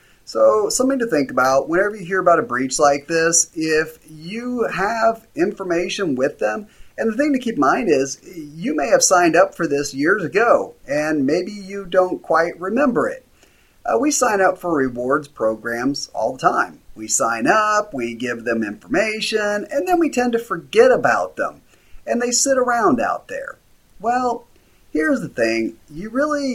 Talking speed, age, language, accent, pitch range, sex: 180 wpm, 30-49, English, American, 145-225 Hz, male